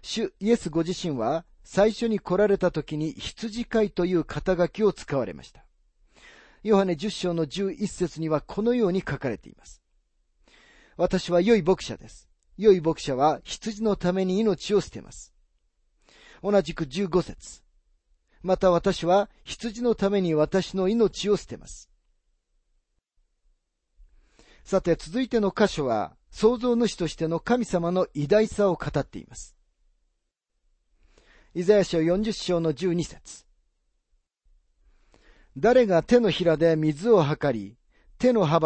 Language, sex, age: Japanese, male, 40-59